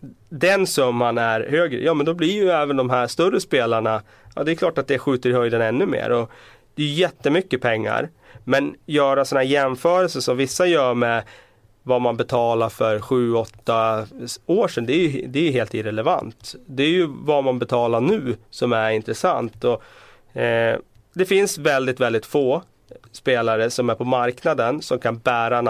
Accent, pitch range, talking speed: native, 115-145 Hz, 190 wpm